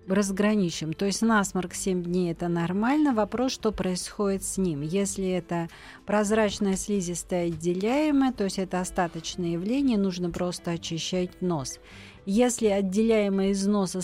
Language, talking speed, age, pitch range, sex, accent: Russian, 135 wpm, 40-59, 170-210 Hz, female, native